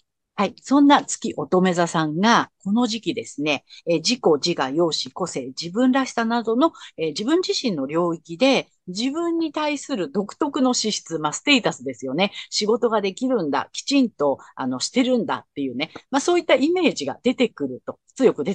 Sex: female